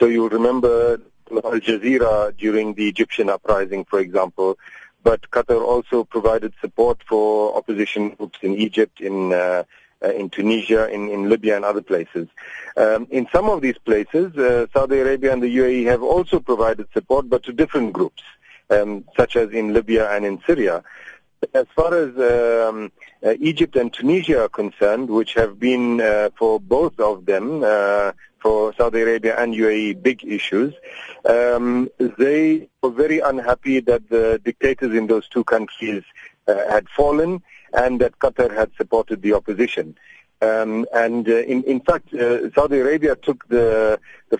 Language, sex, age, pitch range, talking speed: English, male, 40-59, 110-130 Hz, 160 wpm